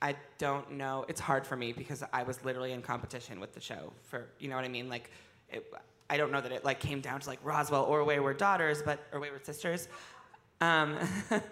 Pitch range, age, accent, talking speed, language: 130-150 Hz, 20-39, American, 225 wpm, English